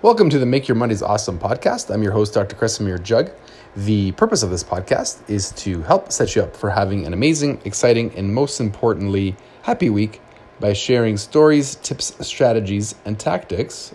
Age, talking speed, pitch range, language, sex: 30-49, 180 wpm, 105-130 Hz, English, male